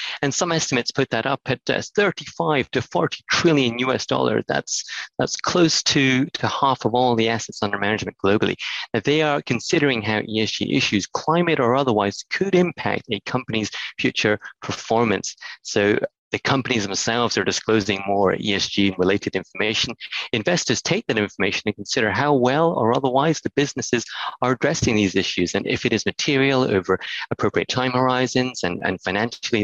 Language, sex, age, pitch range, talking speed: English, male, 30-49, 100-130 Hz, 160 wpm